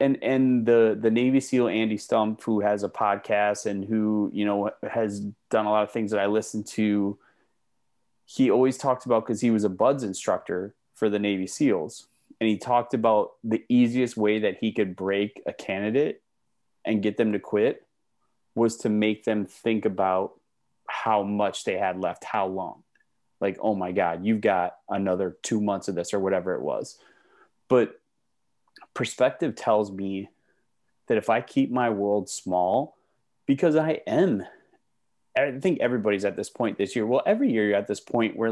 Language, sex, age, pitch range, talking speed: English, male, 20-39, 105-120 Hz, 180 wpm